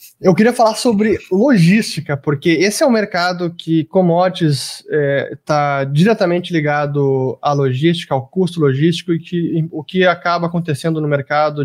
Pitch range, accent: 145-195 Hz, Brazilian